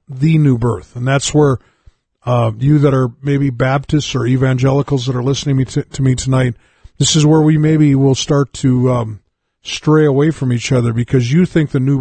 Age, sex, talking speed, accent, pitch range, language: 50-69, male, 195 wpm, American, 125-145 Hz, English